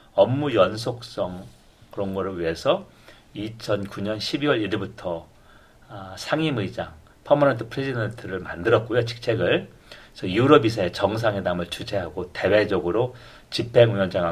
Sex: male